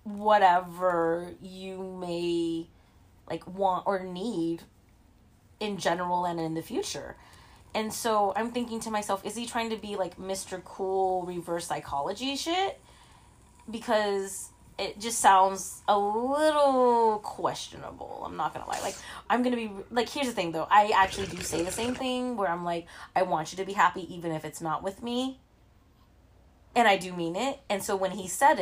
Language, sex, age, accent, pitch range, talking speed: English, female, 20-39, American, 170-215 Hz, 170 wpm